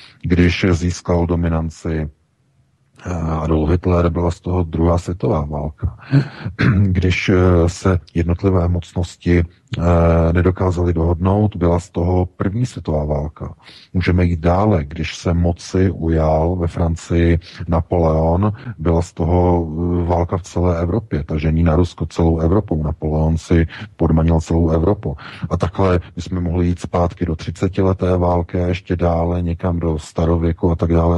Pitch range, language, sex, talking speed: 85-95 Hz, Czech, male, 135 wpm